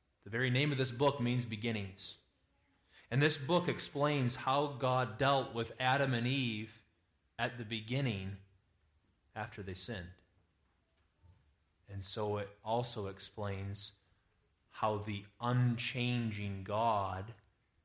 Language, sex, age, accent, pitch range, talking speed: English, male, 30-49, American, 90-120 Hz, 115 wpm